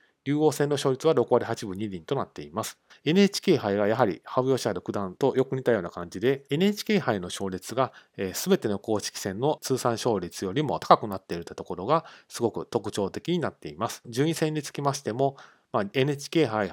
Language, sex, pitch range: Japanese, male, 105-140 Hz